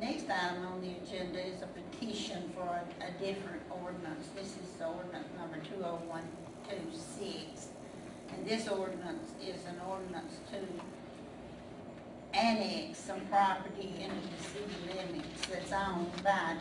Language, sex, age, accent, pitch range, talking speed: English, female, 60-79, American, 180-195 Hz, 140 wpm